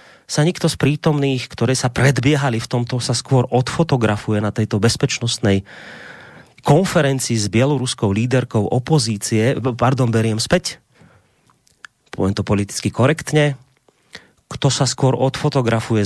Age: 30-49